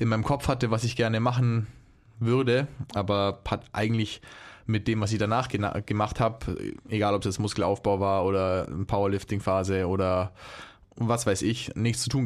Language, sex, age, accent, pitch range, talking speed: German, male, 20-39, German, 100-110 Hz, 160 wpm